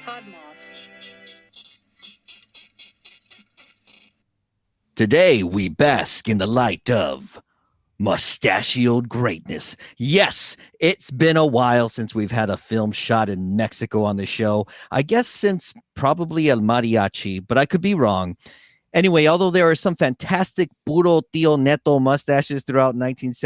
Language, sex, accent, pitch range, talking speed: English, male, American, 115-170 Hz, 120 wpm